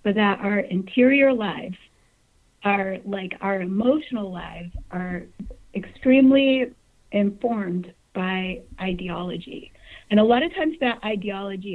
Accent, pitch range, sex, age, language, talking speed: American, 185-250 Hz, female, 40-59, English, 110 wpm